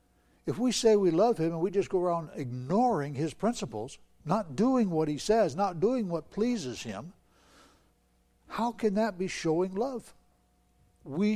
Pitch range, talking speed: 120-185 Hz, 165 wpm